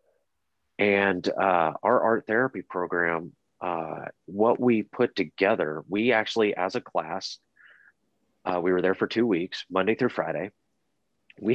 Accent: American